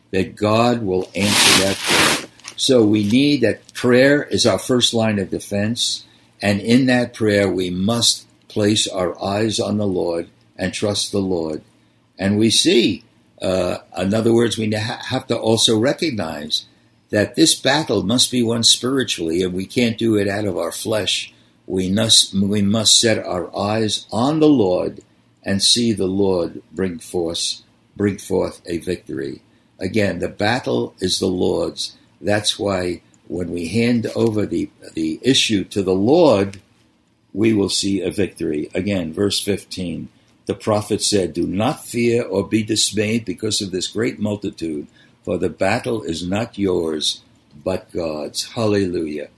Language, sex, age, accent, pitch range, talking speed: English, male, 60-79, American, 100-115 Hz, 155 wpm